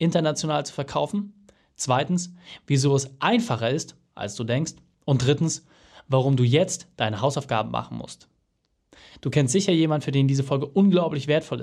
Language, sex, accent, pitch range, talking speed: German, male, German, 125-165 Hz, 155 wpm